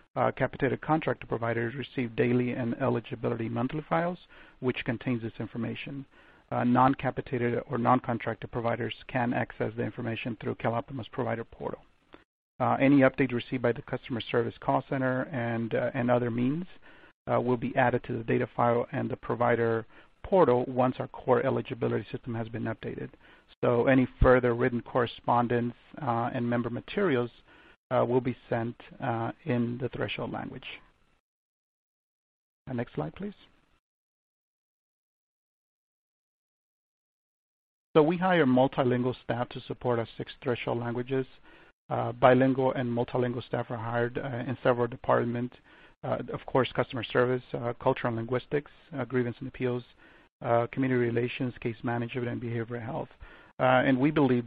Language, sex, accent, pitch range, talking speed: English, male, American, 120-130 Hz, 145 wpm